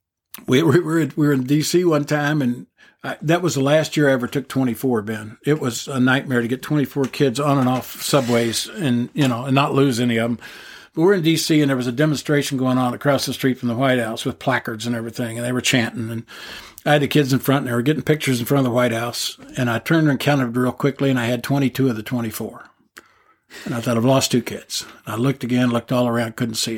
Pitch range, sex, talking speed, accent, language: 120-150 Hz, male, 255 wpm, American, English